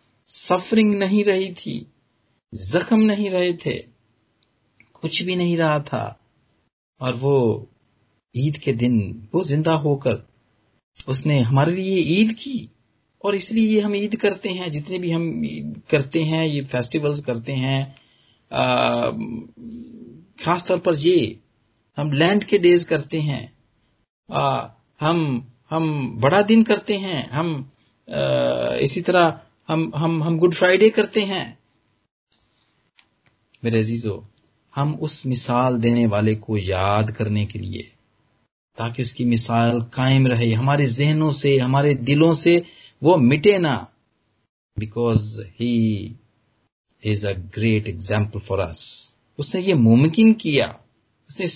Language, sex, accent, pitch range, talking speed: Hindi, male, native, 110-165 Hz, 125 wpm